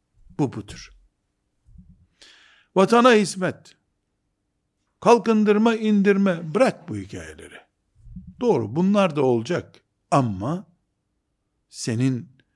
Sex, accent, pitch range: male, native, 125-190 Hz